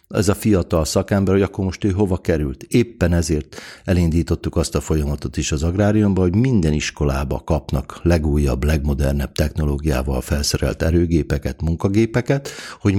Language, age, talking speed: Hungarian, 60-79, 140 wpm